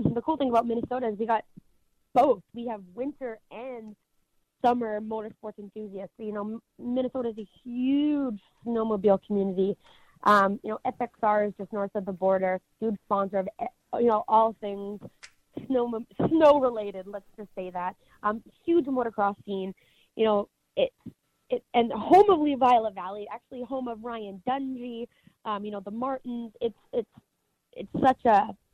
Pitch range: 205-255 Hz